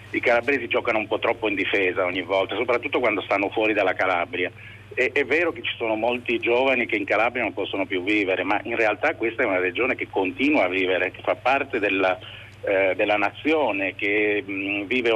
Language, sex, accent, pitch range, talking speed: Italian, male, native, 100-135 Hz, 200 wpm